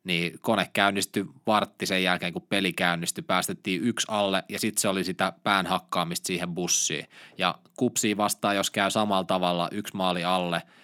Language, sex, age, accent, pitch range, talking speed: Finnish, male, 20-39, native, 90-110 Hz, 160 wpm